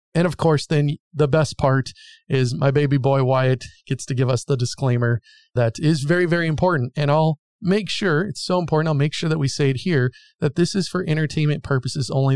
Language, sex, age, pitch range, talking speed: English, male, 30-49, 135-160 Hz, 220 wpm